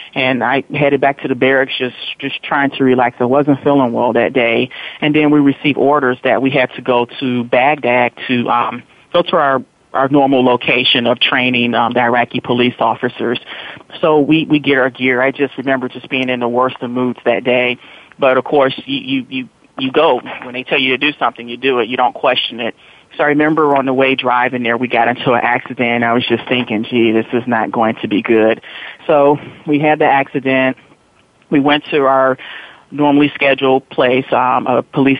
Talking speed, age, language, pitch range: 215 wpm, 30-49, English, 125-145 Hz